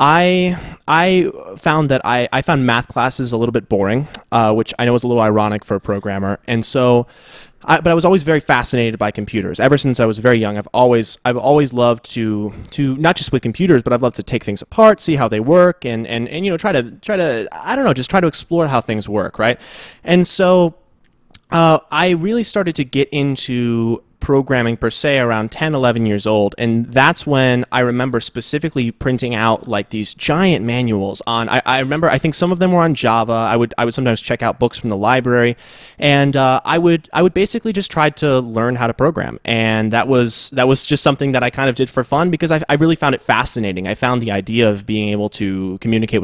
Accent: American